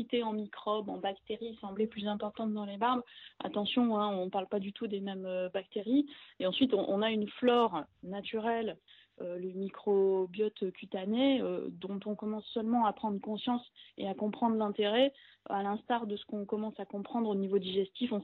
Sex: female